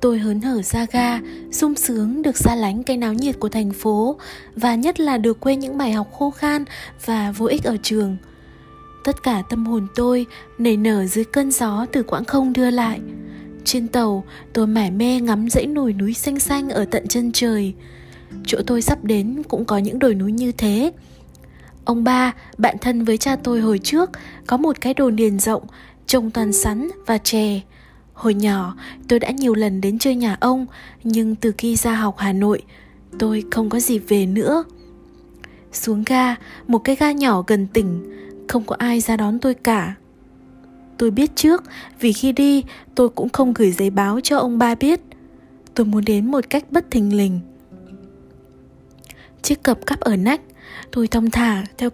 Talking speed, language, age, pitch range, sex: 190 wpm, Vietnamese, 20-39, 210-260 Hz, female